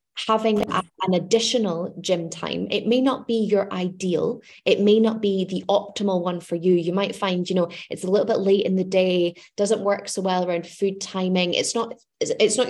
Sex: female